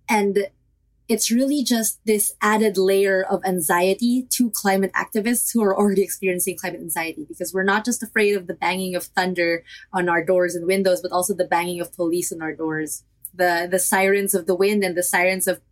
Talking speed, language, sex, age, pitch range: 200 wpm, English, female, 20-39, 180-220 Hz